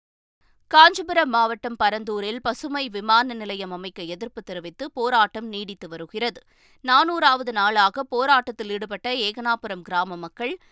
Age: 20-39